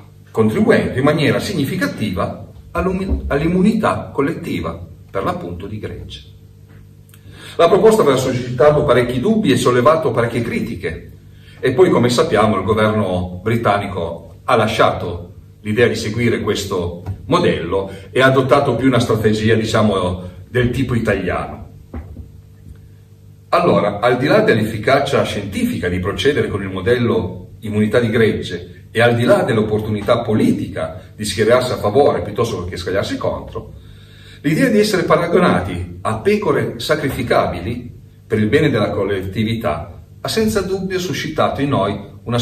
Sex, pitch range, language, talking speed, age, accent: male, 95-120 Hz, Italian, 130 wpm, 40-59, native